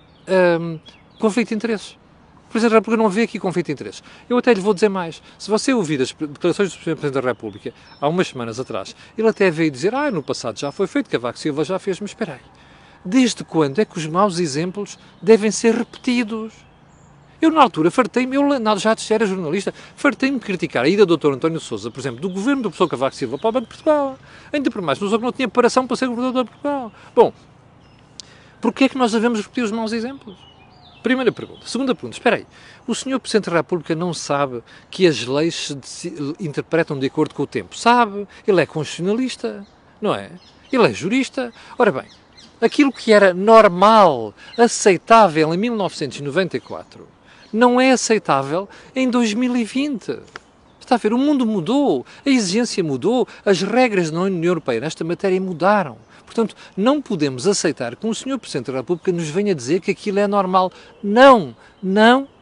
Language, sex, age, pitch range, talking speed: Portuguese, male, 40-59, 165-235 Hz, 190 wpm